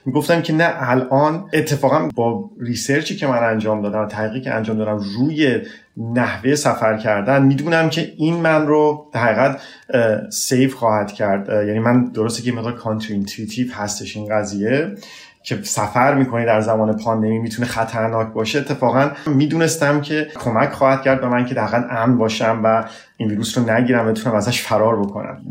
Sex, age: male, 30-49